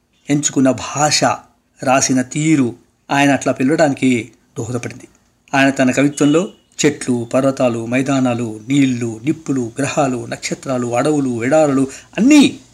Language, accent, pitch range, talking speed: Telugu, native, 125-160 Hz, 95 wpm